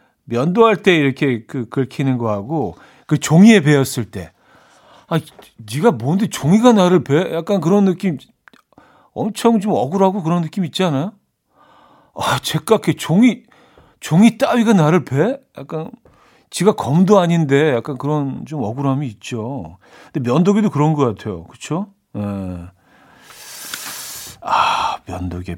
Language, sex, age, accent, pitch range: Korean, male, 40-59, native, 120-175 Hz